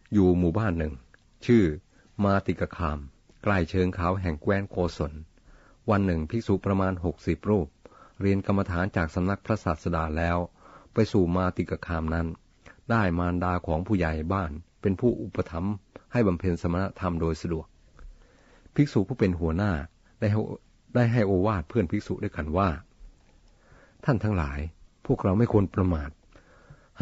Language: Thai